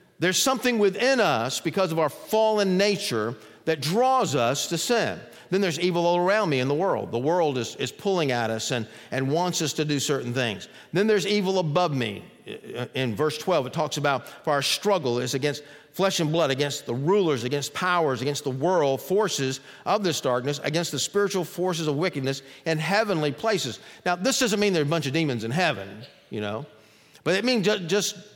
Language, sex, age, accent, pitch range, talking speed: English, male, 50-69, American, 140-195 Hz, 205 wpm